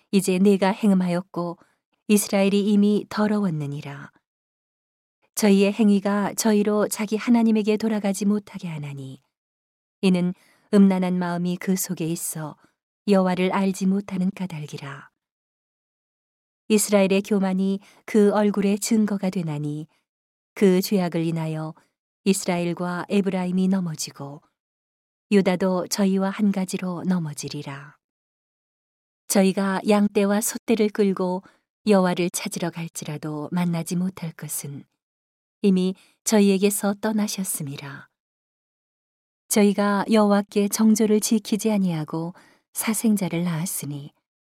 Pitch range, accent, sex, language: 170-205 Hz, native, female, Korean